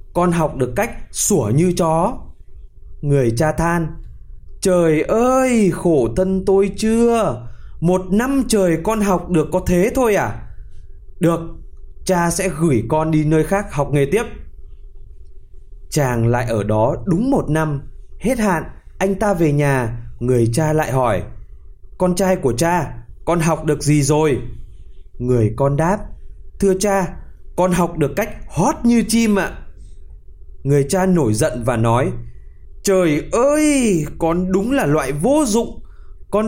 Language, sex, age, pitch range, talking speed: Vietnamese, male, 20-39, 120-190 Hz, 150 wpm